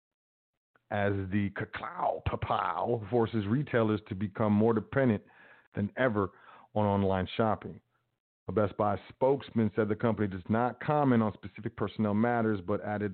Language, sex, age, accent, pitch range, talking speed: English, male, 40-59, American, 105-120 Hz, 140 wpm